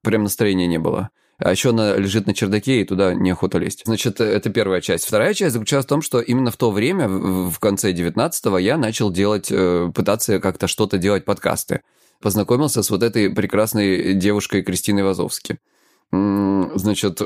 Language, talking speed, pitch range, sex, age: Russian, 165 wpm, 100-120 Hz, male, 20-39